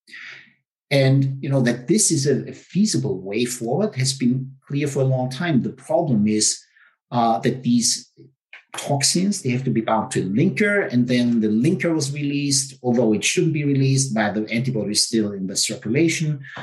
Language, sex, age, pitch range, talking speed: English, male, 50-69, 115-145 Hz, 185 wpm